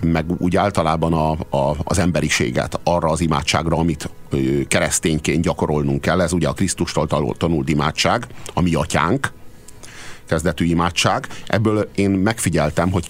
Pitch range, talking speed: 80-105 Hz, 125 wpm